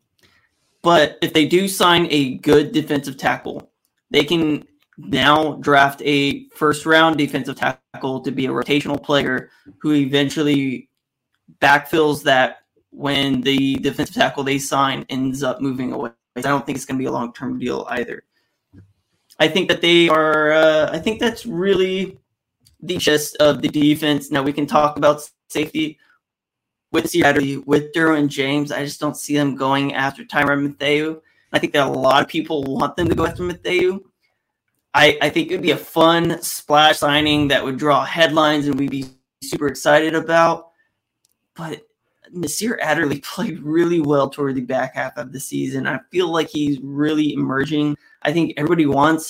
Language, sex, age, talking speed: English, male, 20-39, 170 wpm